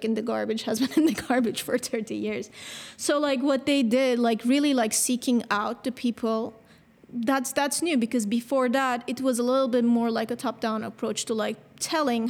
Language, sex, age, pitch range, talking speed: English, female, 20-39, 225-265 Hz, 205 wpm